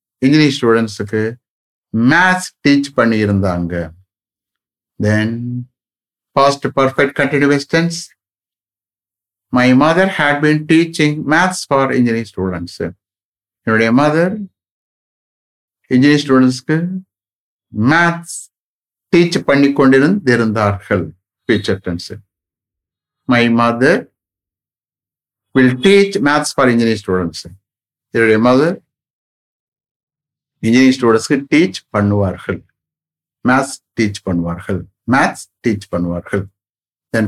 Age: 50-69